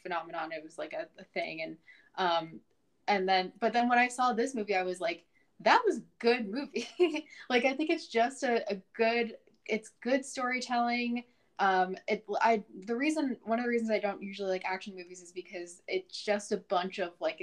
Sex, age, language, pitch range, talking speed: female, 10-29, English, 185-230 Hz, 205 wpm